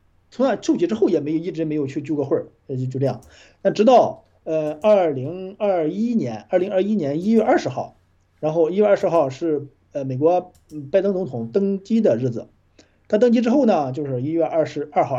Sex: male